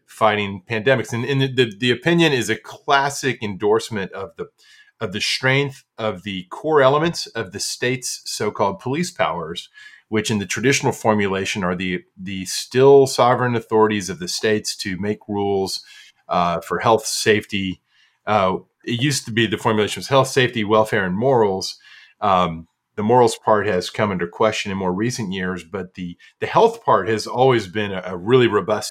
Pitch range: 105-135 Hz